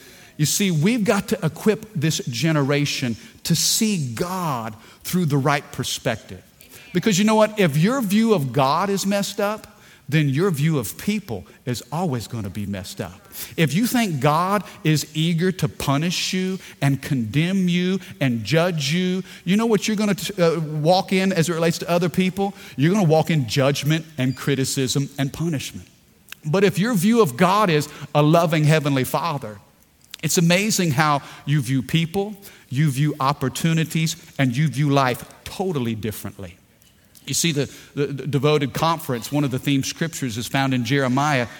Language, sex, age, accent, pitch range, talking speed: English, male, 50-69, American, 135-185 Hz, 170 wpm